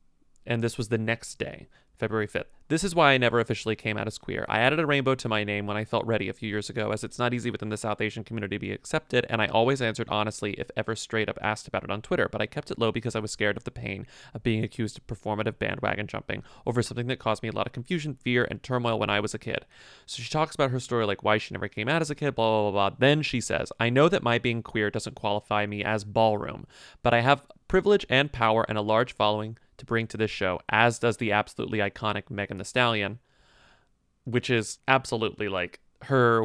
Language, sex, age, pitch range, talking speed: English, male, 30-49, 105-125 Hz, 255 wpm